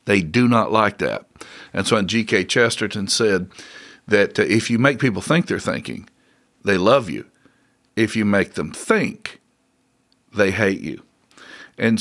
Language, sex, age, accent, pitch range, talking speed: English, male, 50-69, American, 105-130 Hz, 160 wpm